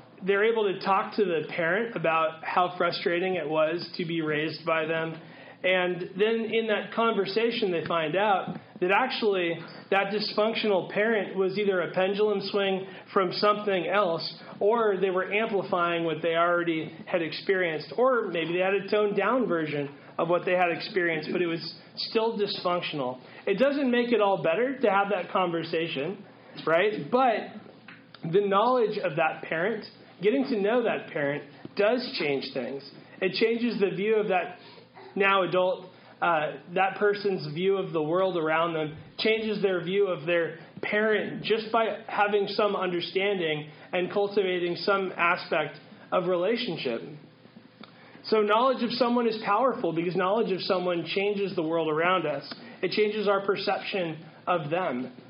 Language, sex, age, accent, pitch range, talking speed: English, male, 30-49, American, 170-210 Hz, 155 wpm